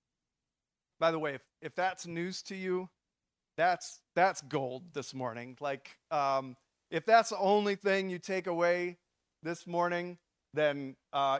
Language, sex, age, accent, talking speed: English, male, 40-59, American, 145 wpm